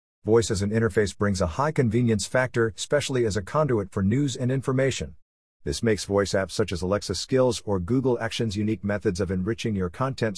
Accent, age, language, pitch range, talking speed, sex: American, 50-69, English, 100-135 Hz, 195 wpm, male